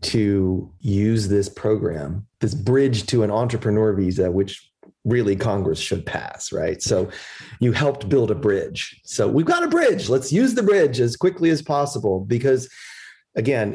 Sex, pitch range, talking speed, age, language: male, 100-135 Hz, 160 wpm, 30-49, English